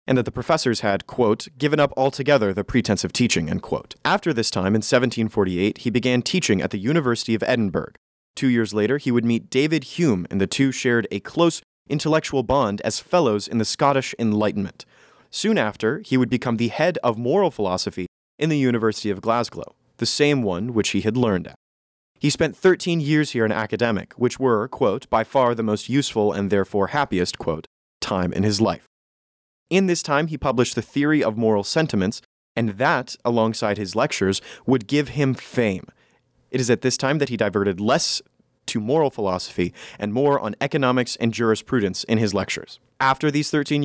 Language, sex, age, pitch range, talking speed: English, male, 30-49, 105-145 Hz, 190 wpm